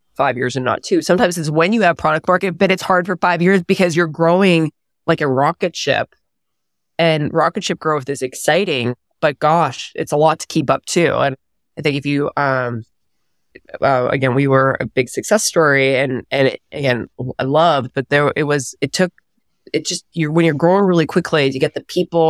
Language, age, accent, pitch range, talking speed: English, 20-39, American, 140-180 Hz, 210 wpm